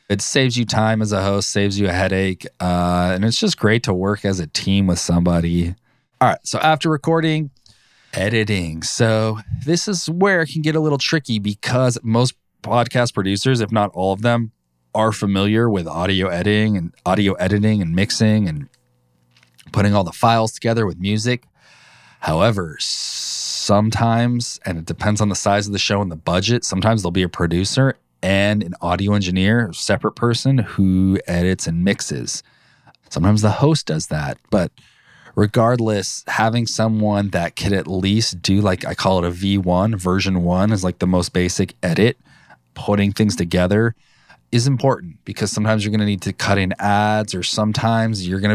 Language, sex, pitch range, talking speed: English, male, 95-115 Hz, 175 wpm